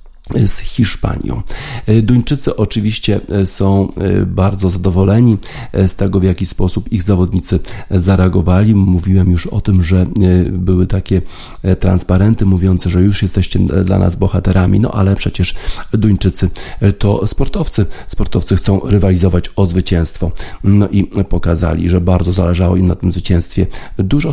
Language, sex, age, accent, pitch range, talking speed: Polish, male, 40-59, native, 90-100 Hz, 130 wpm